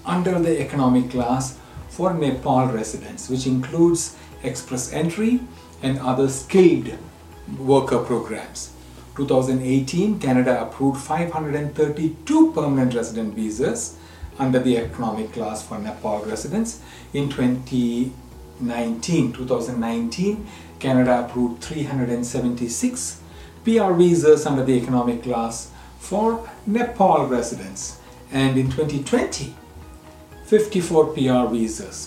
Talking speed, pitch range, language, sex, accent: 95 wpm, 110-145 Hz, English, male, Indian